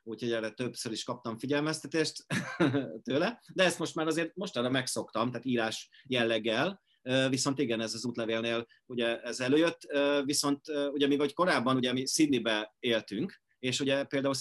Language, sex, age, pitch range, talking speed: Hungarian, male, 40-59, 115-140 Hz, 155 wpm